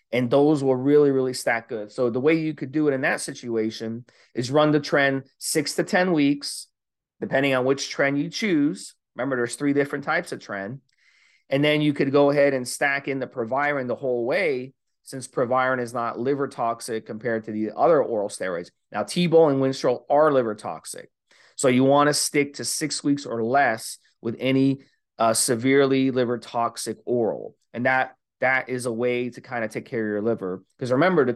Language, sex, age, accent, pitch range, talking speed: English, male, 30-49, American, 120-145 Hz, 200 wpm